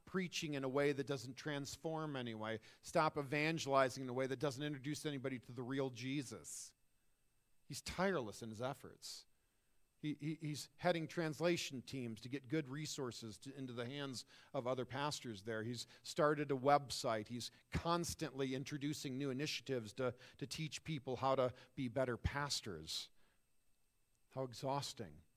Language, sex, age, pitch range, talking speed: English, male, 50-69, 115-145 Hz, 150 wpm